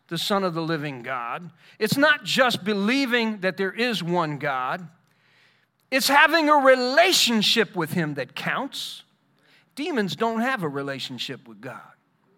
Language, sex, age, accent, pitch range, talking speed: English, male, 40-59, American, 190-285 Hz, 145 wpm